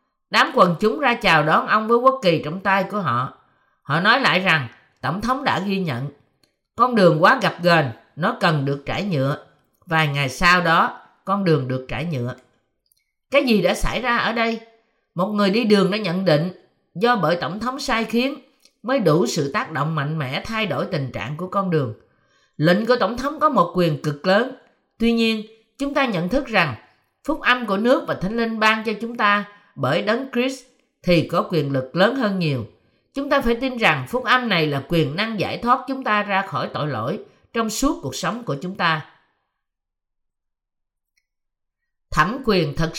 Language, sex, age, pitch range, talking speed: Vietnamese, female, 20-39, 155-230 Hz, 200 wpm